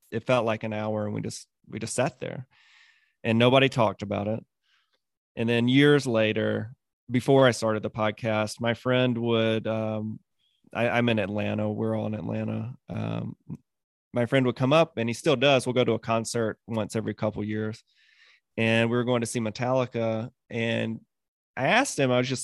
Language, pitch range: English, 110-135 Hz